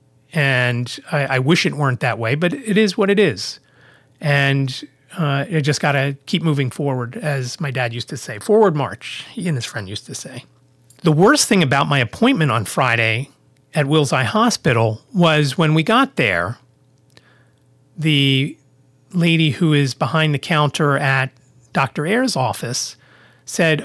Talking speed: 170 wpm